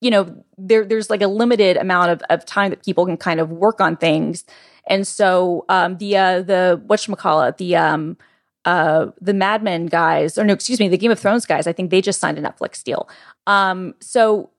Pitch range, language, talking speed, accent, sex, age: 170-205 Hz, English, 215 wpm, American, female, 20-39